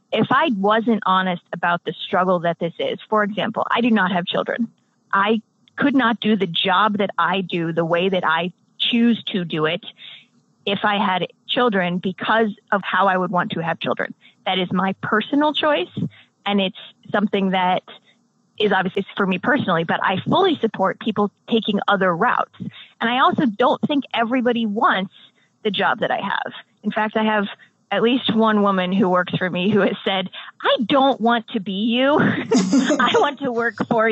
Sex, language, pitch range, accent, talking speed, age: female, English, 190-245 Hz, American, 190 wpm, 20-39